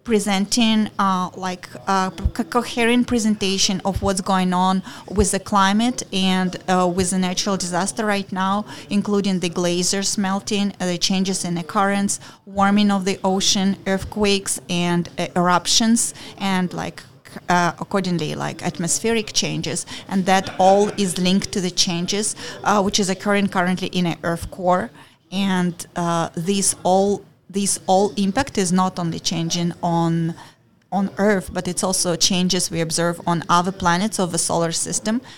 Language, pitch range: English, 170-195 Hz